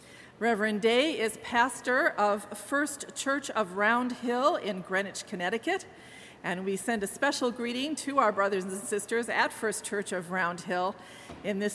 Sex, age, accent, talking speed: female, 40-59, American, 165 wpm